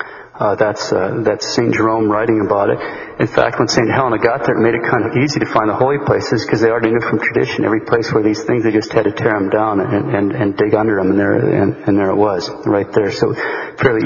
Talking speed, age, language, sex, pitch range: 265 wpm, 40-59, English, male, 110-135 Hz